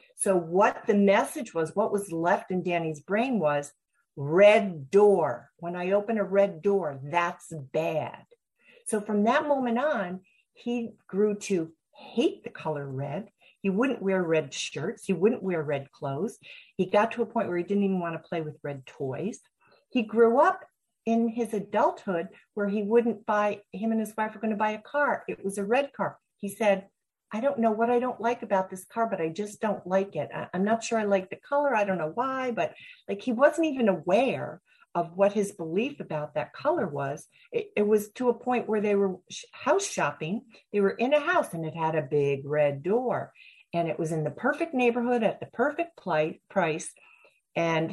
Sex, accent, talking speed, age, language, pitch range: female, American, 205 wpm, 50-69, English, 170-235 Hz